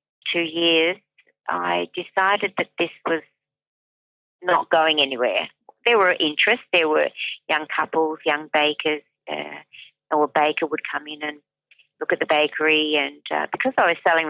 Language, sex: English, female